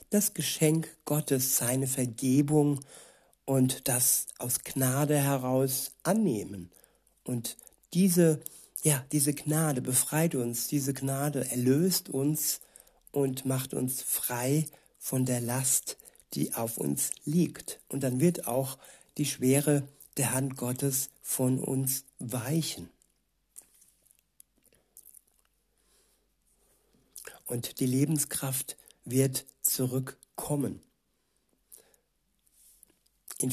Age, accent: 60-79, German